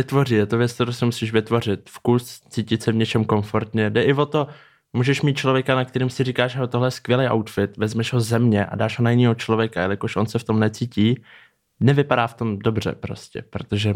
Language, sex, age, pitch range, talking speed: Czech, male, 20-39, 110-130 Hz, 225 wpm